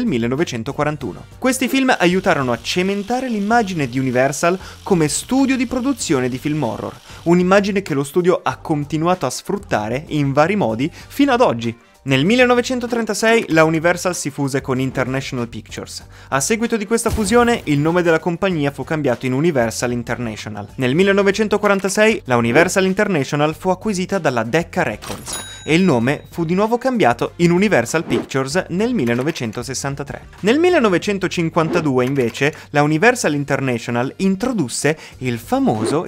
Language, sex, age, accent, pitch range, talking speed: Italian, male, 20-39, native, 125-200 Hz, 140 wpm